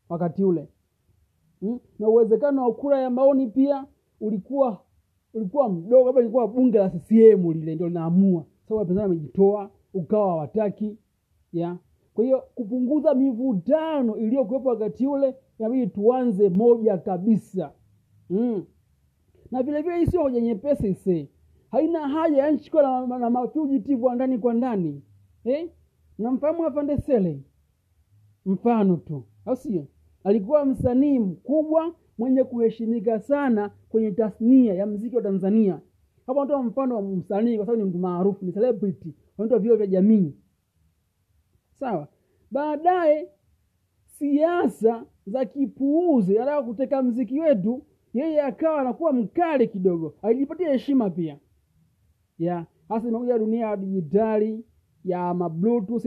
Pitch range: 185-260 Hz